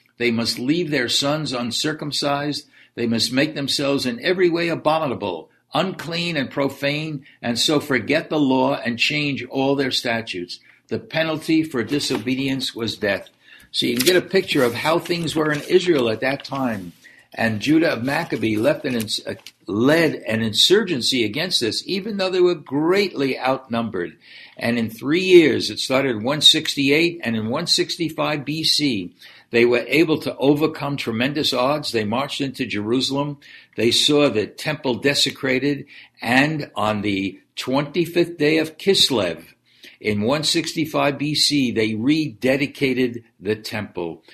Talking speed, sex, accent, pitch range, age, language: 140 wpm, male, American, 115-150 Hz, 60-79, English